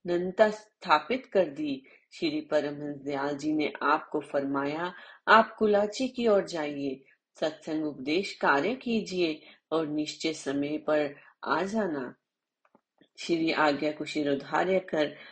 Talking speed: 125 wpm